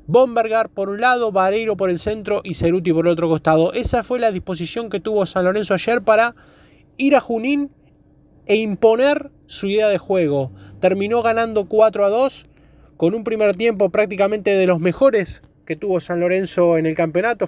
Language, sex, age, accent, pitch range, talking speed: Spanish, male, 20-39, Argentinian, 160-205 Hz, 180 wpm